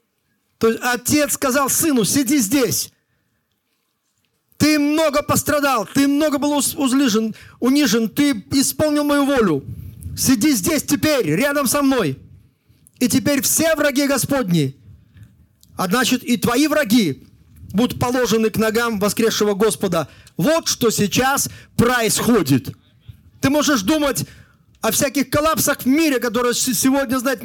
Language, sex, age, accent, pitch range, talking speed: Russian, male, 40-59, native, 220-295 Hz, 120 wpm